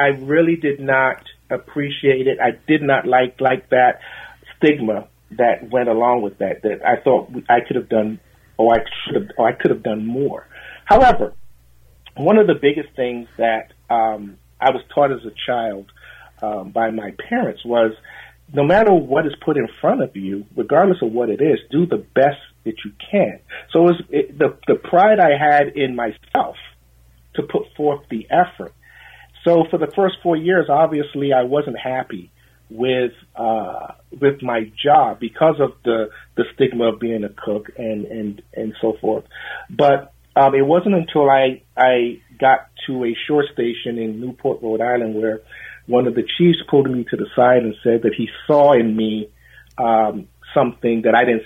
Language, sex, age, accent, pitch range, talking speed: English, male, 40-59, American, 110-140 Hz, 185 wpm